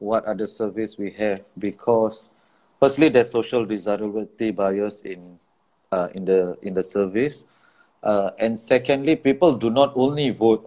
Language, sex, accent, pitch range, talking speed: English, male, Malaysian, 105-140 Hz, 145 wpm